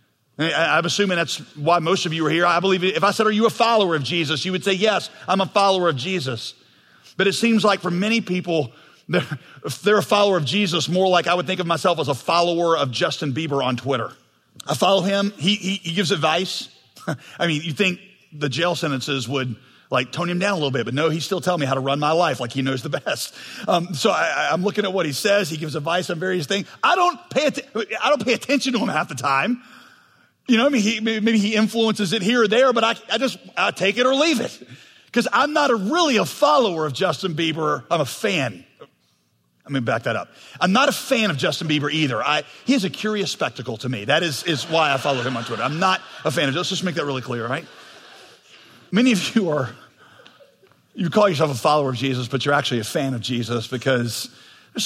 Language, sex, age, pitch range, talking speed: English, male, 40-59, 140-200 Hz, 240 wpm